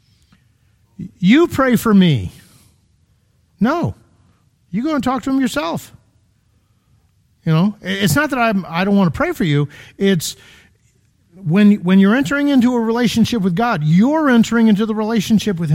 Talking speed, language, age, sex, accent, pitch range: 155 wpm, English, 50-69, male, American, 135-205 Hz